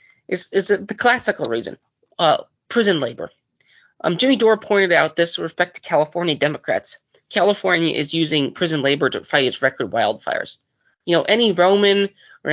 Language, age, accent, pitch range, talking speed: English, 20-39, American, 150-190 Hz, 160 wpm